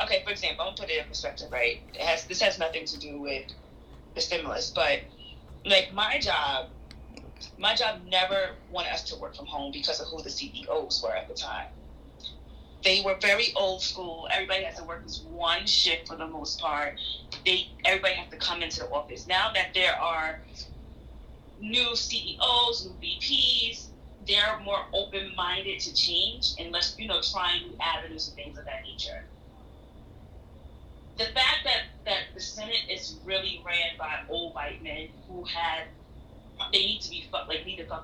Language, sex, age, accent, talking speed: English, female, 30-49, American, 175 wpm